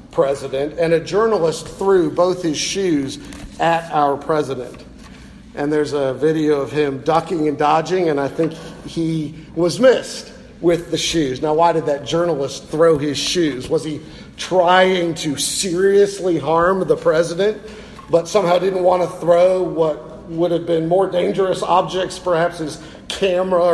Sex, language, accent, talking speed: male, English, American, 155 wpm